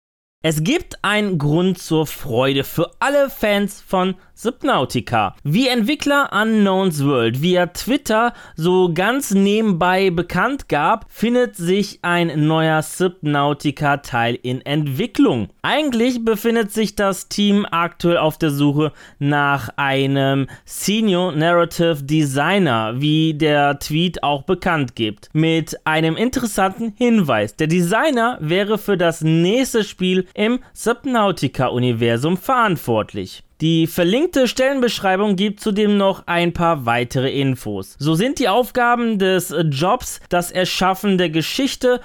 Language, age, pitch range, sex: German, 20-39, 150-210 Hz, male